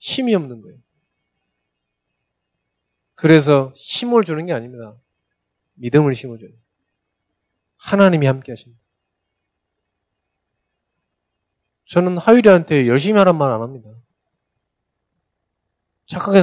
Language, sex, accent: Korean, male, native